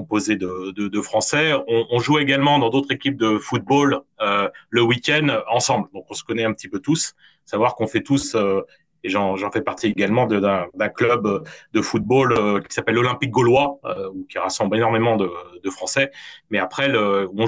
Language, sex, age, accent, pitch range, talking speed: French, male, 30-49, French, 105-135 Hz, 205 wpm